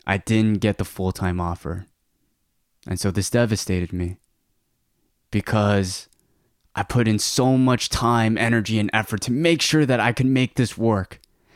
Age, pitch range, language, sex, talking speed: 20-39, 90-105 Hz, English, male, 155 wpm